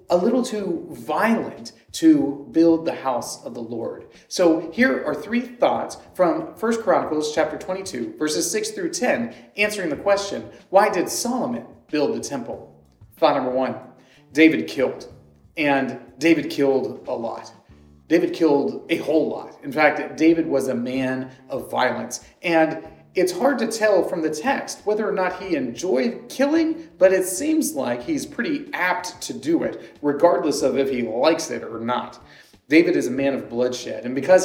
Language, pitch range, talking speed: English, 140-220 Hz, 170 wpm